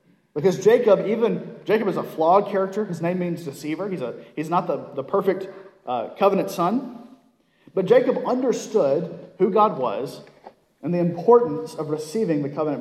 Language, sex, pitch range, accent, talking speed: English, male, 155-205 Hz, American, 165 wpm